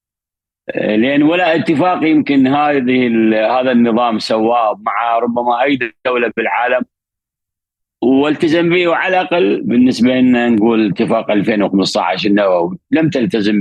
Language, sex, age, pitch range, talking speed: Arabic, male, 50-69, 110-130 Hz, 110 wpm